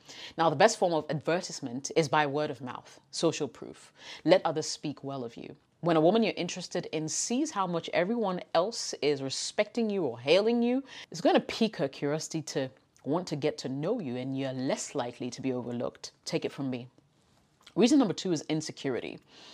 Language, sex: English, female